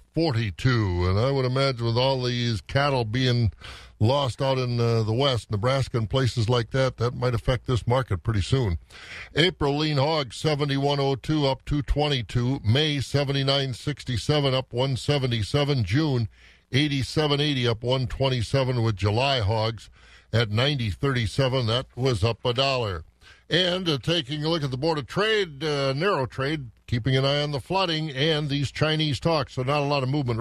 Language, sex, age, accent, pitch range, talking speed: English, male, 50-69, American, 120-145 Hz, 160 wpm